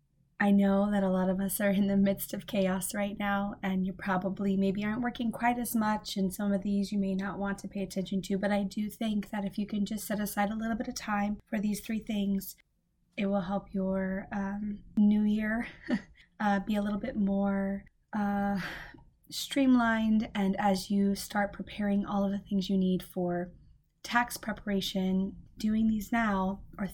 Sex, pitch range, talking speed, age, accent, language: female, 195-220 Hz, 200 wpm, 20-39, American, English